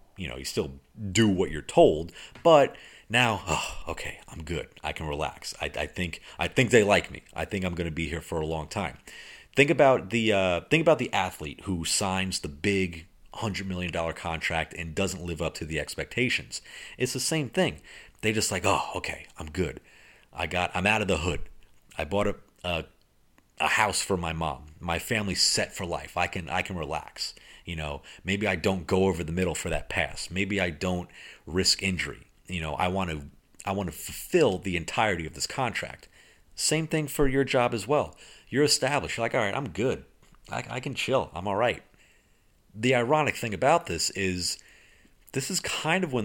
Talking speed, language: 210 wpm, English